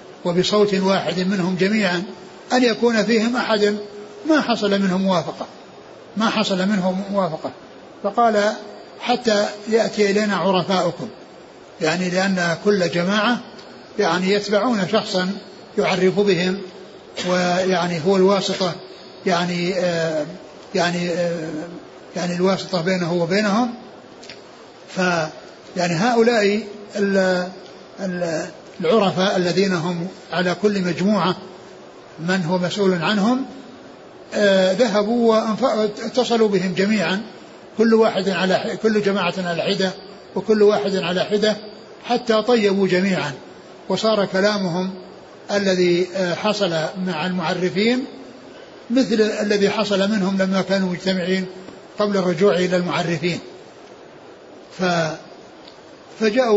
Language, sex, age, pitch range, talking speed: Arabic, male, 60-79, 180-210 Hz, 95 wpm